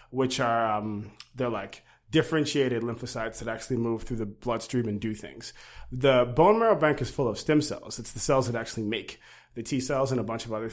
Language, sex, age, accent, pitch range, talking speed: English, male, 30-49, American, 115-140 Hz, 220 wpm